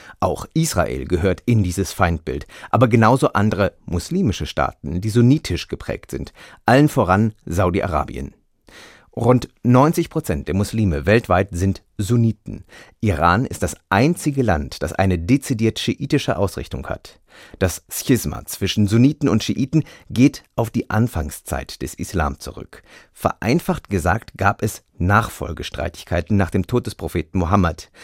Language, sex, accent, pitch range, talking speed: German, male, German, 90-120 Hz, 130 wpm